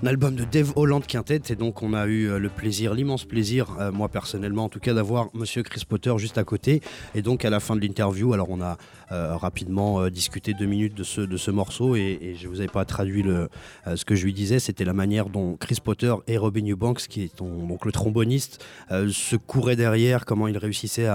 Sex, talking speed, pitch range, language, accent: male, 240 wpm, 100-115 Hz, French, French